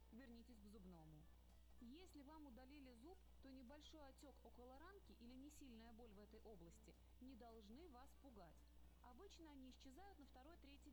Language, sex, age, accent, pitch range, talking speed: Russian, female, 20-39, native, 225-300 Hz, 155 wpm